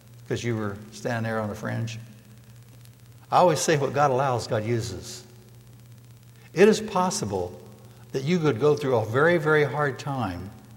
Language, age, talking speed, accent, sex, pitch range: English, 60-79, 160 wpm, American, male, 115-135 Hz